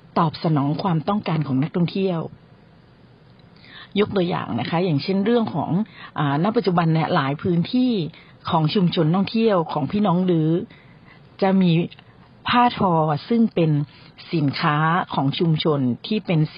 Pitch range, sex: 150-195 Hz, female